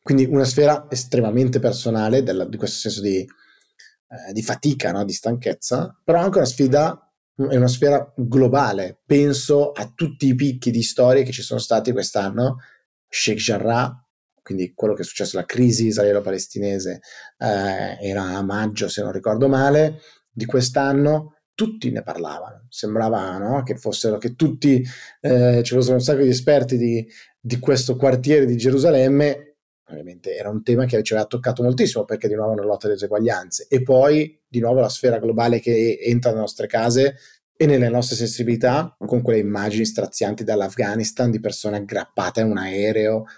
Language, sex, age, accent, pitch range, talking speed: Italian, male, 30-49, native, 110-135 Hz, 165 wpm